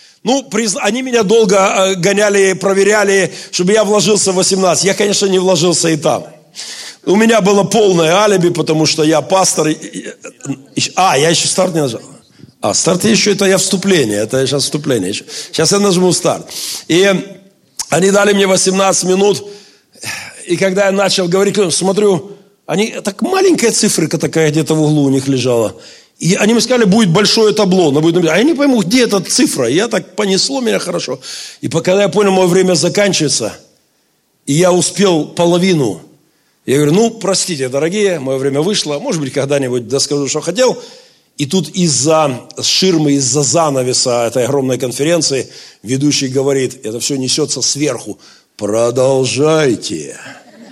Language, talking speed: Russian, 155 wpm